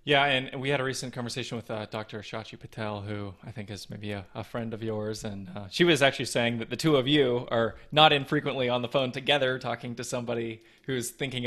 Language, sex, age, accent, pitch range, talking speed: English, male, 20-39, American, 110-130 Hz, 235 wpm